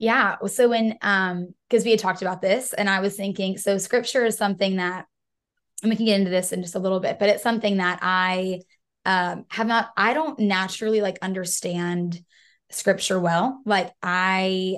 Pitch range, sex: 185-215 Hz, female